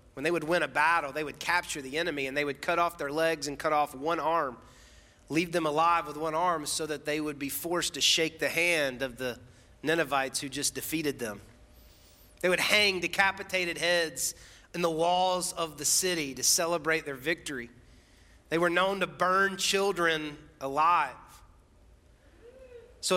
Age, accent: 30-49, American